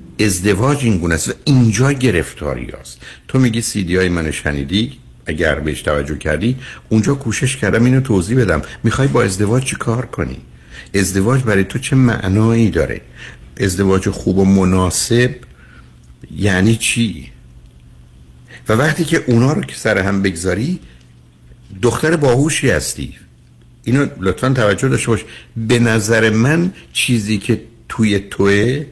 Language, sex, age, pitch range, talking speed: Persian, male, 60-79, 85-120 Hz, 135 wpm